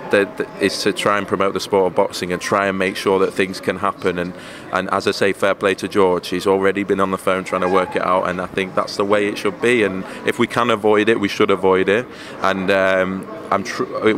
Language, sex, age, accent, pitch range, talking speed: English, male, 20-39, British, 95-105 Hz, 255 wpm